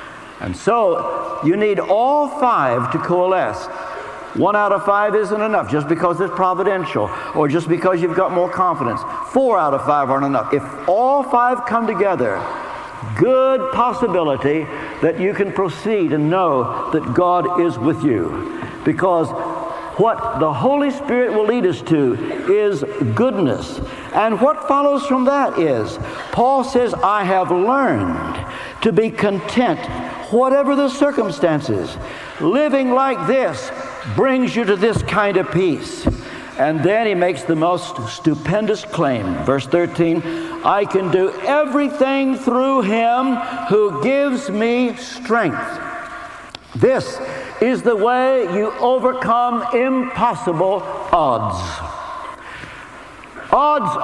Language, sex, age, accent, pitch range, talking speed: English, male, 60-79, American, 180-265 Hz, 130 wpm